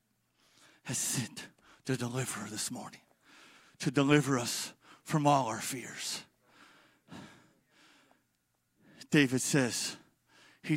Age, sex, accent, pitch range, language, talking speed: 40-59, male, American, 140-190 Hz, English, 85 wpm